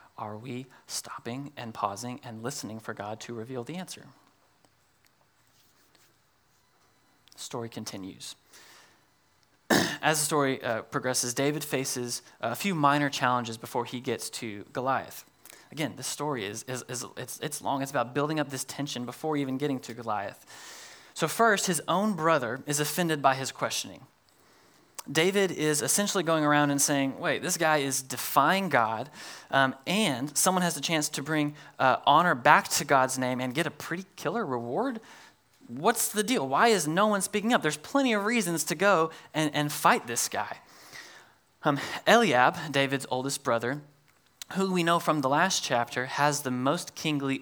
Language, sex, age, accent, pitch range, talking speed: English, male, 20-39, American, 125-165 Hz, 165 wpm